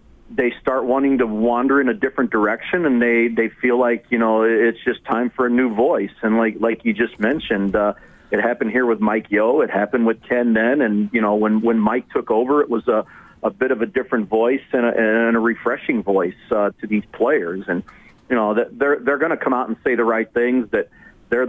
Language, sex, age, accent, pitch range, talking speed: English, male, 40-59, American, 110-125 Hz, 235 wpm